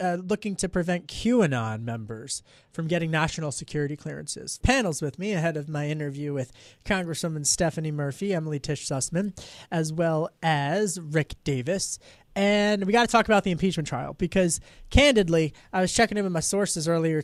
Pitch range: 155-195 Hz